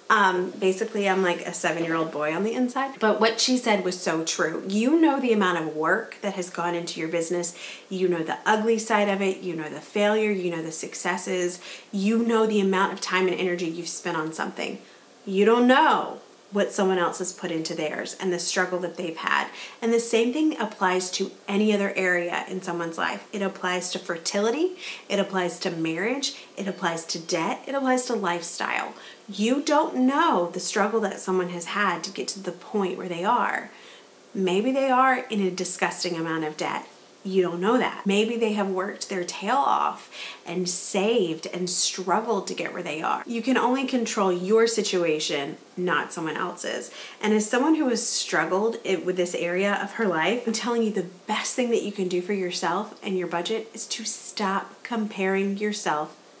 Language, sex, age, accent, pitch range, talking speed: English, female, 30-49, American, 175-225 Hz, 200 wpm